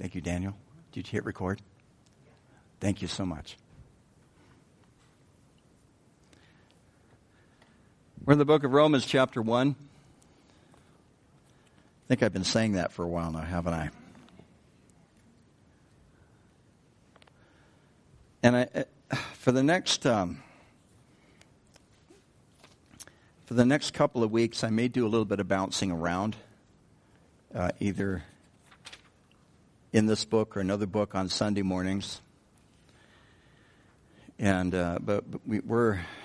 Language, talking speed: English, 115 wpm